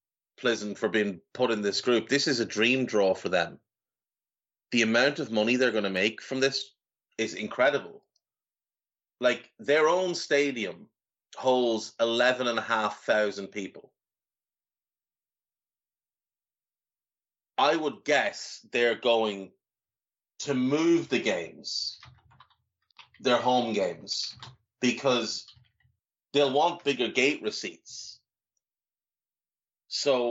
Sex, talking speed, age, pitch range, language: male, 105 wpm, 30-49, 110-135 Hz, English